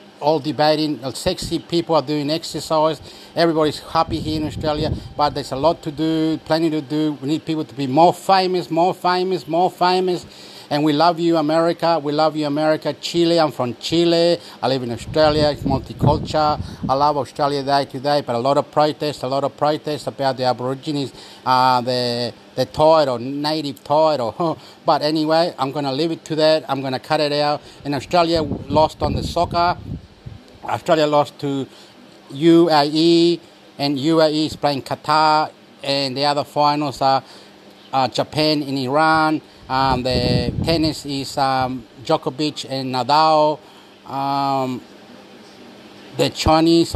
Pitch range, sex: 135-160 Hz, male